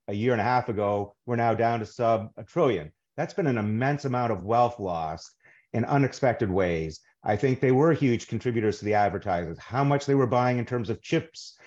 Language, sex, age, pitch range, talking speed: English, male, 40-59, 110-130 Hz, 215 wpm